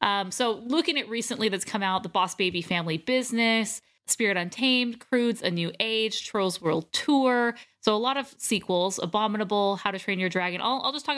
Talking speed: 200 wpm